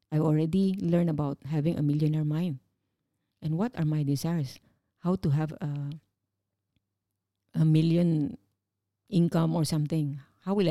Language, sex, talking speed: English, female, 135 wpm